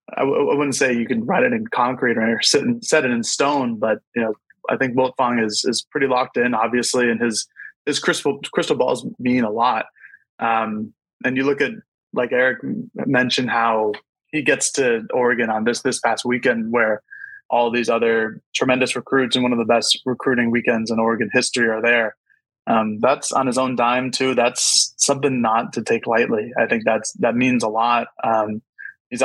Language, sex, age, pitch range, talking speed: English, male, 20-39, 115-130 Hz, 195 wpm